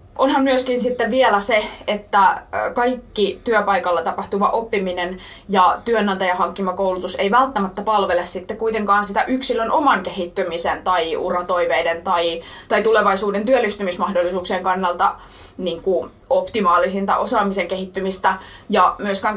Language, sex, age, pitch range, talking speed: Finnish, female, 20-39, 180-215 Hz, 110 wpm